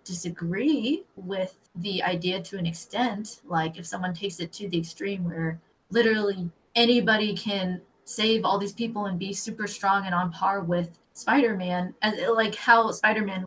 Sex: female